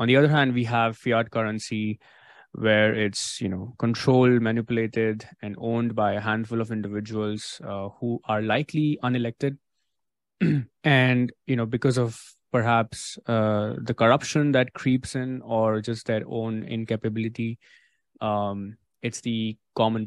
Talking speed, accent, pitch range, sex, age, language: 140 wpm, Indian, 105-120 Hz, male, 20-39, English